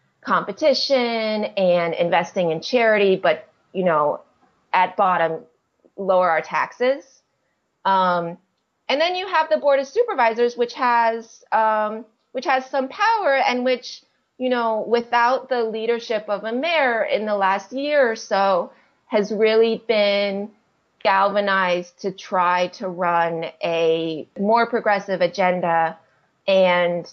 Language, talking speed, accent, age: English, 130 wpm, American, 30-49